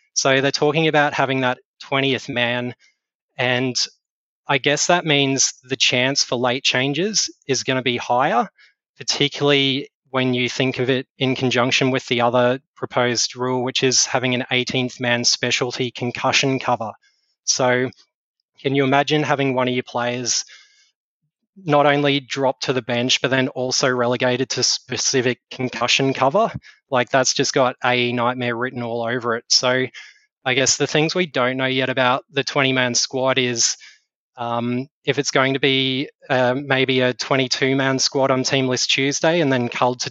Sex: male